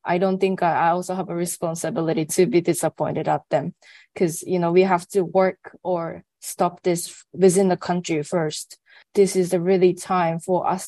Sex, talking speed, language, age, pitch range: female, 180 wpm, English, 20-39, 175-195 Hz